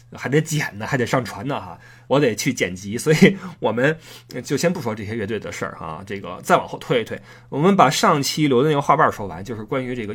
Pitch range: 115-175 Hz